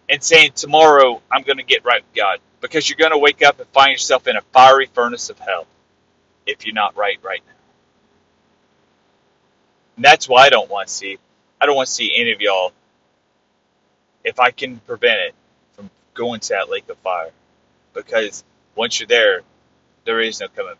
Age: 30-49